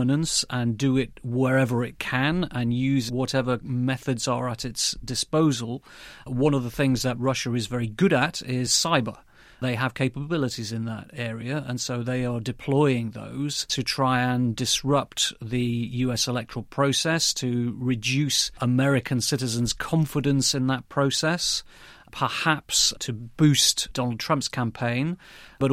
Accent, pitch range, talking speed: British, 120-140 Hz, 140 wpm